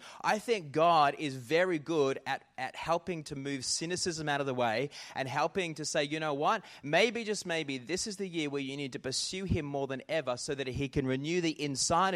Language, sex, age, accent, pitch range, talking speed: English, male, 20-39, Australian, 140-170 Hz, 225 wpm